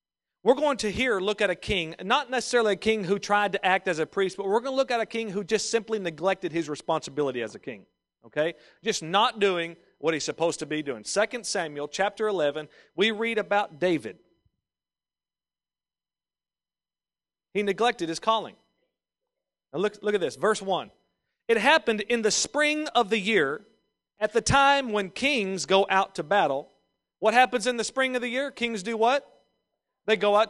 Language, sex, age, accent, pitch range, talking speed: English, male, 40-59, American, 180-230 Hz, 190 wpm